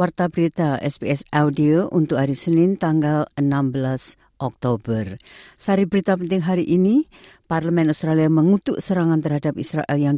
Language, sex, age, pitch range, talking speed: Indonesian, female, 50-69, 140-170 Hz, 130 wpm